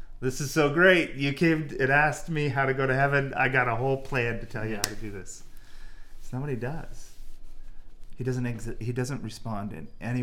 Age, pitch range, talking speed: 30-49, 110-135 Hz, 230 wpm